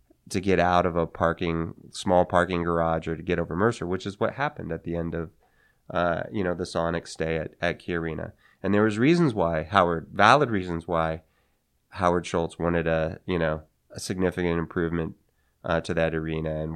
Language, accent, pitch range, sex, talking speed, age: English, American, 85-105 Hz, male, 195 wpm, 30-49